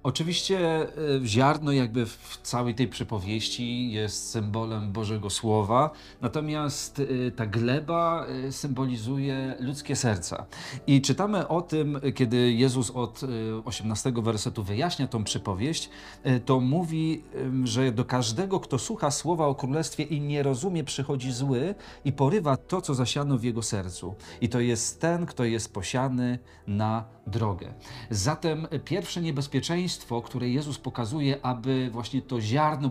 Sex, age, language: male, 40-59, Polish